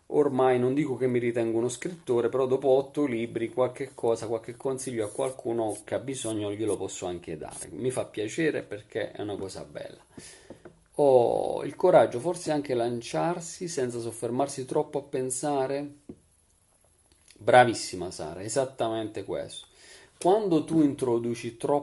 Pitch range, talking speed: 115-160 Hz, 145 wpm